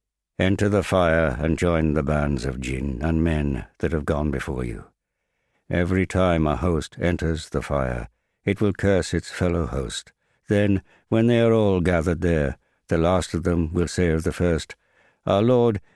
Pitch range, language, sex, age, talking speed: 75-100 Hz, English, male, 60-79, 175 wpm